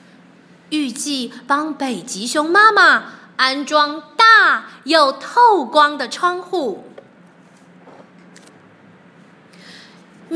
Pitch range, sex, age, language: 305-440 Hz, female, 30-49, Chinese